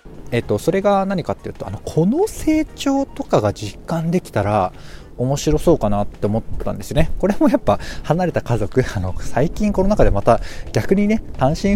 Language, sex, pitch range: Japanese, male, 105-175 Hz